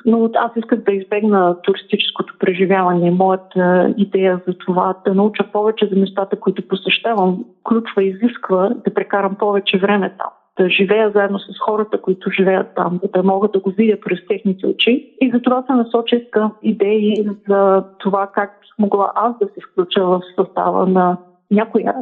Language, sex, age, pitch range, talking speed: Bulgarian, female, 30-49, 195-235 Hz, 165 wpm